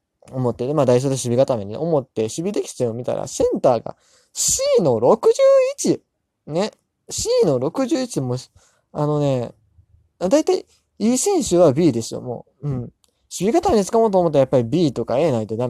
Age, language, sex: 20-39, Japanese, male